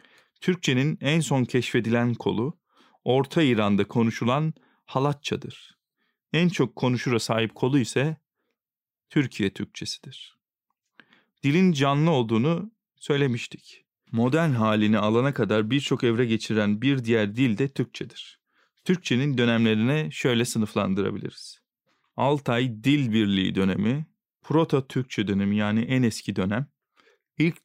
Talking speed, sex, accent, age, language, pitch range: 105 wpm, male, native, 40-59, Turkish, 110-145 Hz